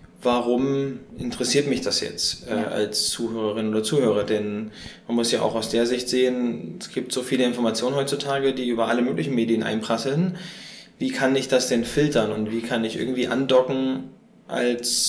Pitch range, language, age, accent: 115-135 Hz, German, 20-39, German